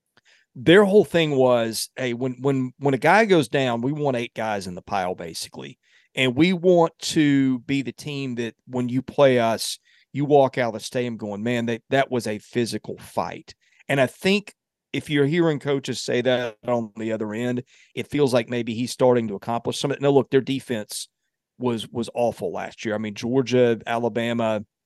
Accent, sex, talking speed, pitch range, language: American, male, 195 wpm, 115-140 Hz, English